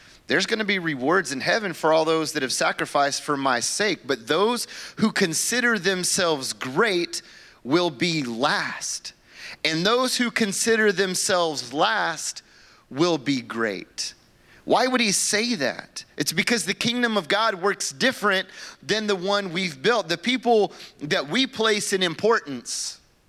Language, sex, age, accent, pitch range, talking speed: English, male, 30-49, American, 170-205 Hz, 150 wpm